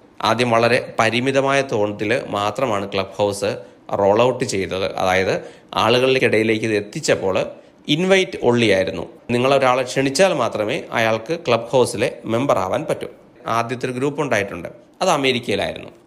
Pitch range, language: 110-135 Hz, Malayalam